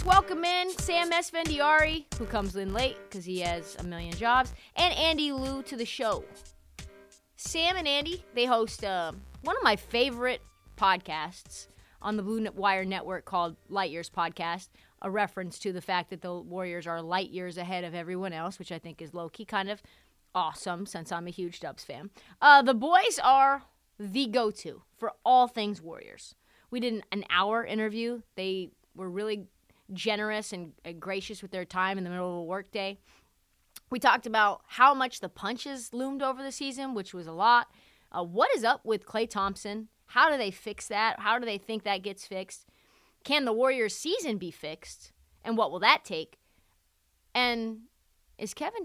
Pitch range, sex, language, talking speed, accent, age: 185-250 Hz, female, English, 185 wpm, American, 30-49